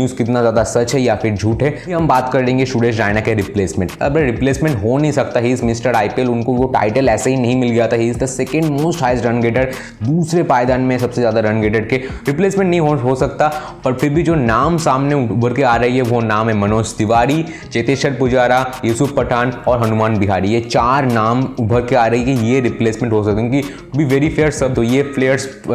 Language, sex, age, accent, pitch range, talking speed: Hindi, male, 20-39, native, 115-135 Hz, 115 wpm